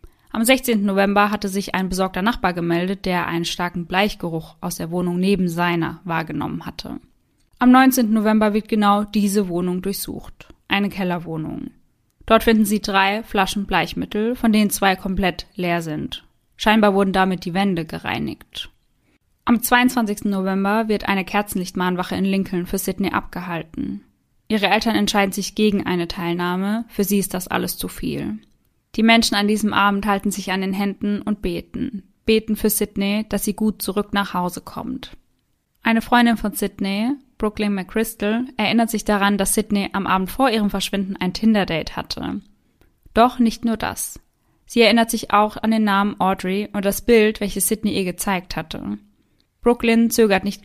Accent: German